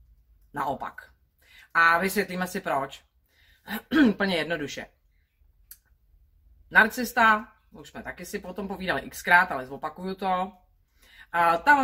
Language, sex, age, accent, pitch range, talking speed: Czech, female, 30-49, native, 130-215 Hz, 95 wpm